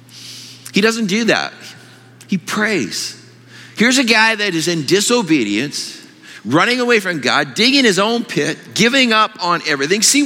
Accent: American